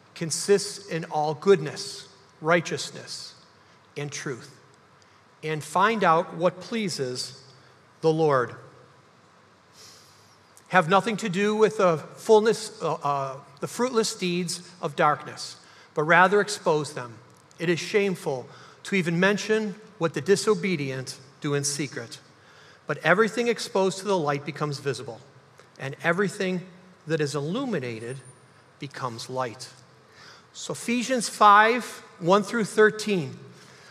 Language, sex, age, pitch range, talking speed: English, male, 40-59, 145-210 Hz, 115 wpm